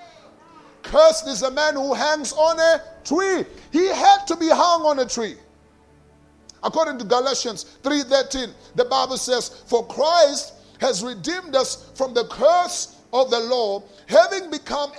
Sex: male